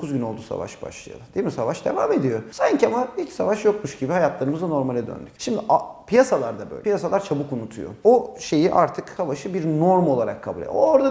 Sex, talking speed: male, 195 wpm